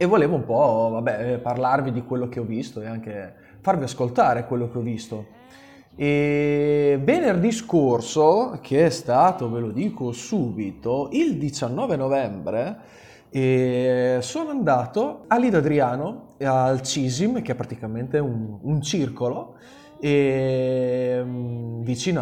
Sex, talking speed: male, 130 wpm